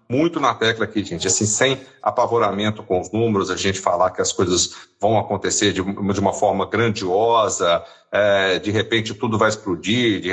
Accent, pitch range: Brazilian, 100-120 Hz